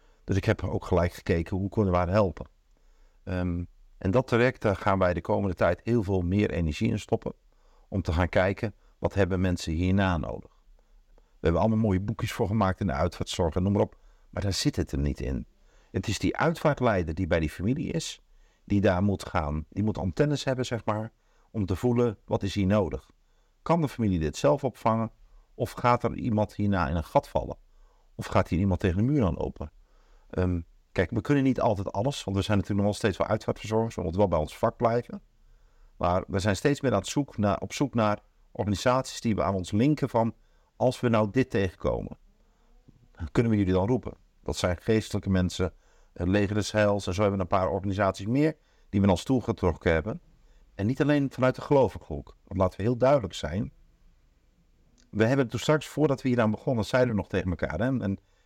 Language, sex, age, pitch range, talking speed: Dutch, male, 50-69, 95-115 Hz, 220 wpm